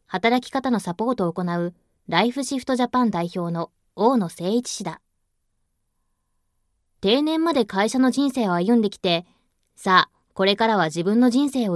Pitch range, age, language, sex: 180-235 Hz, 20-39, Japanese, female